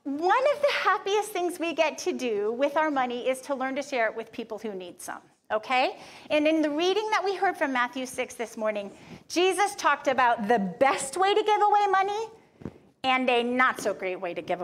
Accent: American